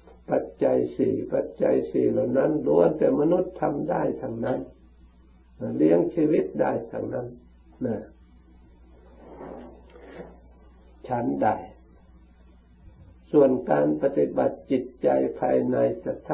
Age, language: 60-79, Thai